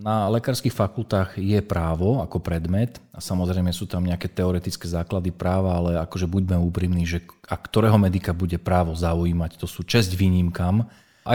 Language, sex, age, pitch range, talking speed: Slovak, male, 40-59, 90-110 Hz, 165 wpm